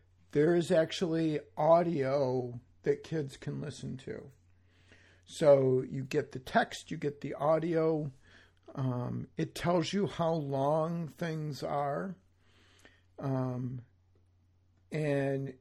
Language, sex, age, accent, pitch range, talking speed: English, male, 50-69, American, 125-165 Hz, 110 wpm